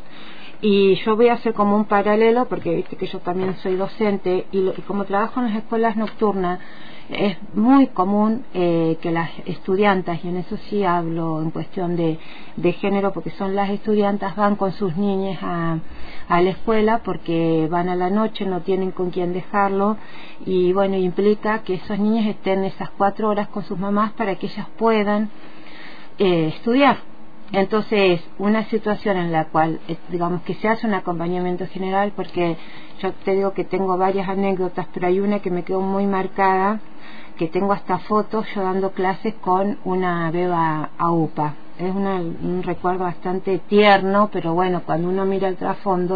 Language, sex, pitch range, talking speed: Spanish, female, 180-205 Hz, 175 wpm